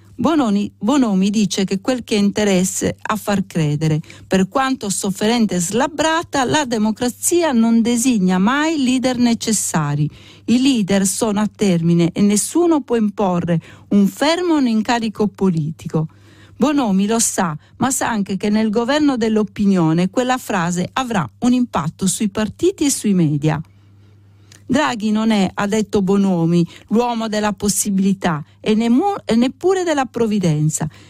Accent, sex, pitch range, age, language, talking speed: native, female, 185-245 Hz, 50-69, Italian, 135 wpm